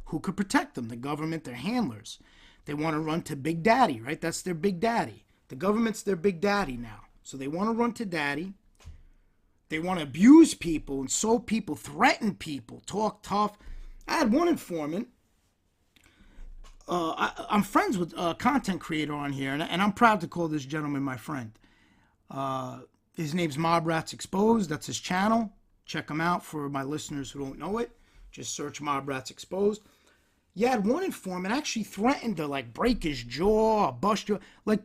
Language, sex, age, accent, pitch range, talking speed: English, male, 30-49, American, 145-230 Hz, 180 wpm